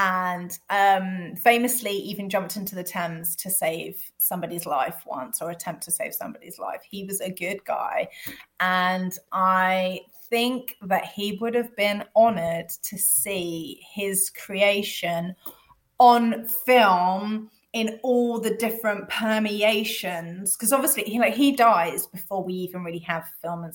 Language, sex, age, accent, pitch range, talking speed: English, female, 20-39, British, 180-215 Hz, 145 wpm